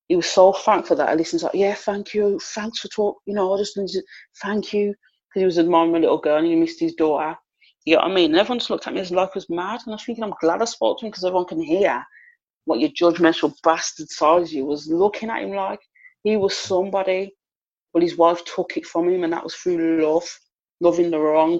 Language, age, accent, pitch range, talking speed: English, 30-49, British, 165-225 Hz, 255 wpm